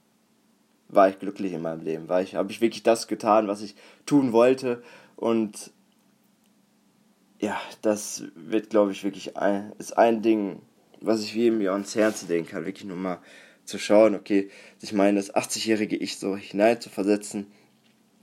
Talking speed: 160 wpm